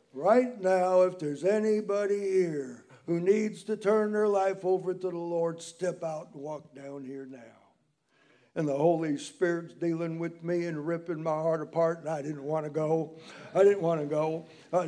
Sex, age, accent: male, 60-79, American